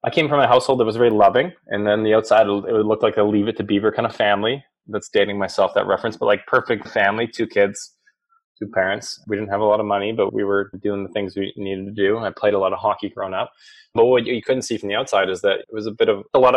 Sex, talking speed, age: male, 285 wpm, 20-39